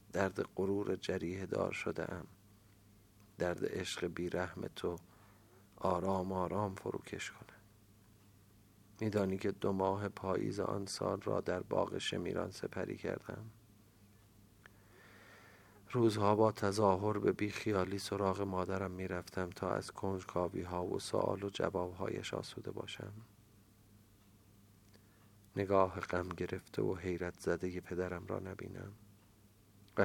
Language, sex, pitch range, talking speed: Persian, male, 95-105 Hz, 110 wpm